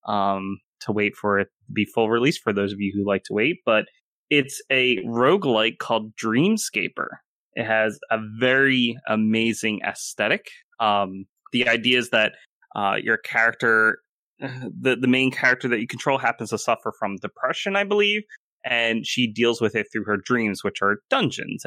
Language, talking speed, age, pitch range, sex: English, 175 wpm, 20-39, 105-125 Hz, male